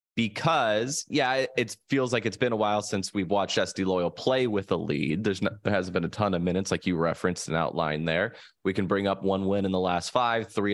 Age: 20-39